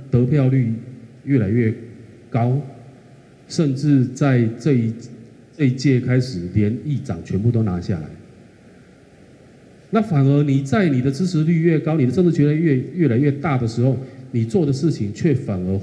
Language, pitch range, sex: Chinese, 105-135 Hz, male